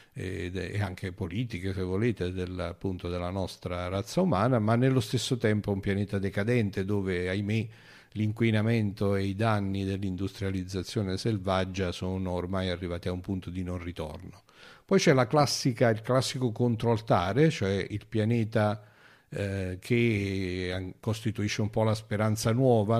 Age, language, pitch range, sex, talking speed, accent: 50-69, Italian, 95-115 Hz, male, 140 wpm, native